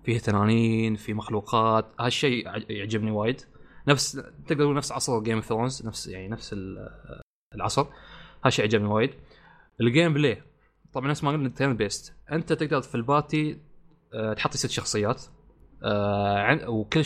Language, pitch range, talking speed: Arabic, 110-140 Hz, 135 wpm